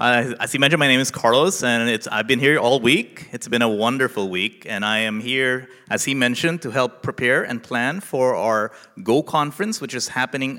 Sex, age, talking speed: male, 30-49, 215 wpm